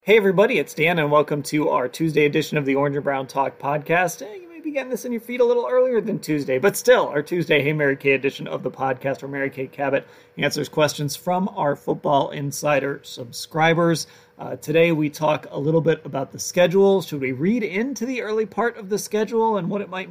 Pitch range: 140-180 Hz